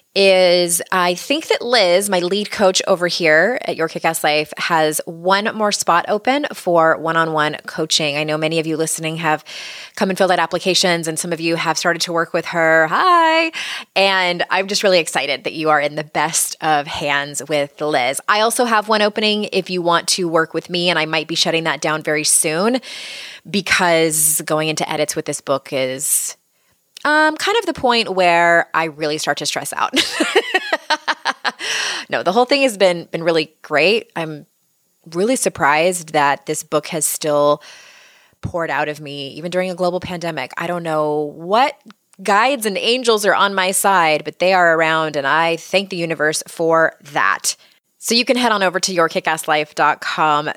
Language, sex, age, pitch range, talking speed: English, female, 20-39, 155-195 Hz, 185 wpm